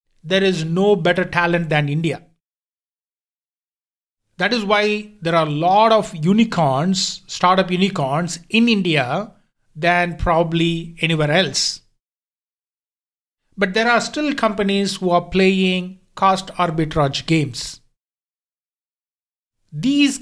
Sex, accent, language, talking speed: male, Indian, English, 105 wpm